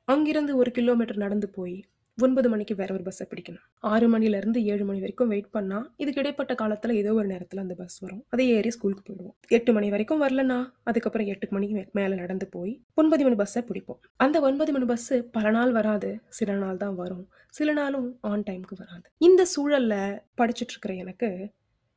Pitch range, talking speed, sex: 195-250 Hz, 175 wpm, female